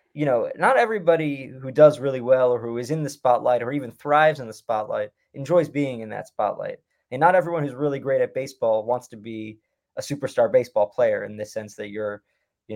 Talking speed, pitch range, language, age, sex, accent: 215 wpm, 120-155 Hz, English, 20-39, male, American